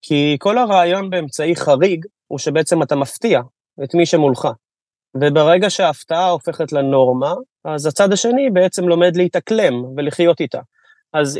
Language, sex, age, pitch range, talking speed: Hebrew, male, 20-39, 145-180 Hz, 130 wpm